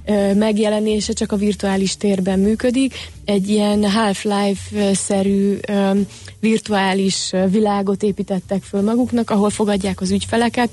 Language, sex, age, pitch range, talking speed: Hungarian, female, 30-49, 195-215 Hz, 100 wpm